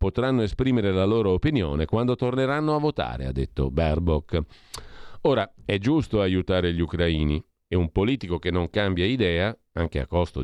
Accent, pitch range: native, 85-115 Hz